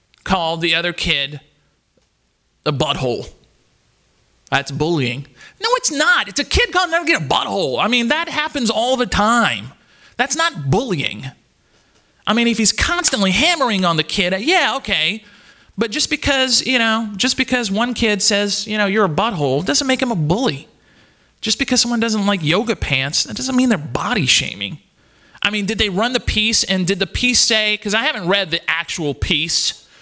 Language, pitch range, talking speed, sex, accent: English, 155-245 Hz, 185 wpm, male, American